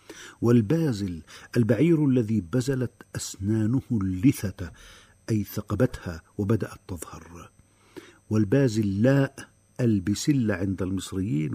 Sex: male